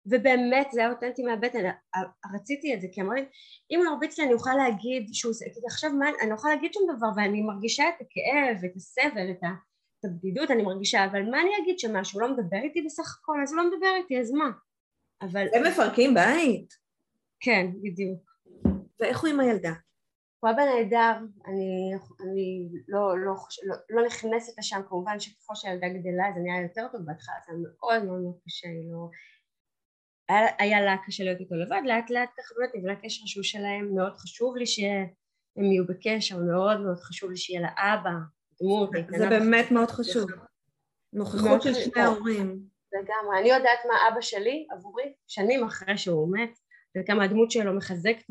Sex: female